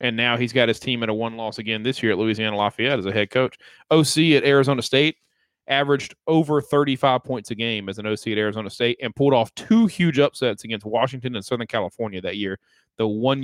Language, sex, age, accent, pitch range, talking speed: English, male, 30-49, American, 110-135 Hz, 230 wpm